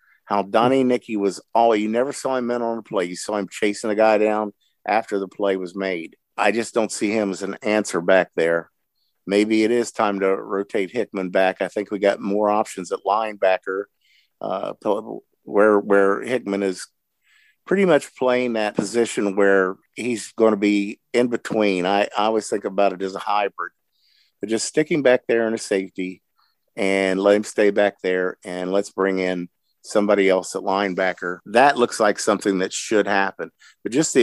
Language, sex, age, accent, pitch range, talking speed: English, male, 50-69, American, 95-115 Hz, 190 wpm